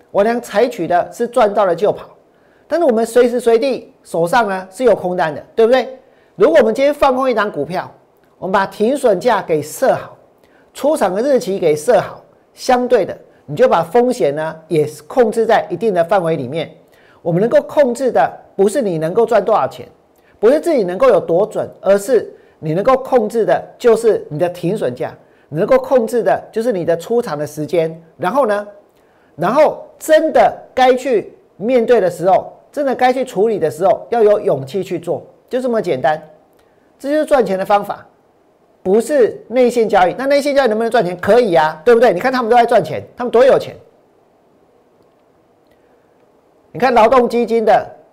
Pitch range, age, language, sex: 195-270 Hz, 40-59, Chinese, male